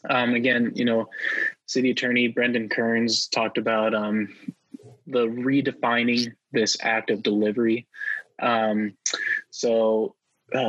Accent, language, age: American, English, 20-39